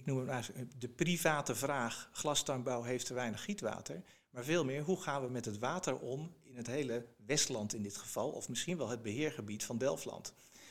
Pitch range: 120-150 Hz